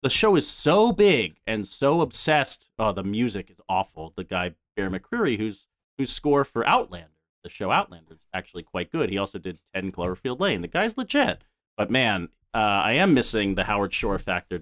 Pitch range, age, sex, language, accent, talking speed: 100-130 Hz, 40-59, male, English, American, 195 wpm